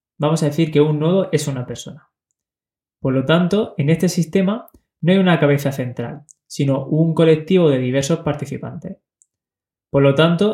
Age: 20-39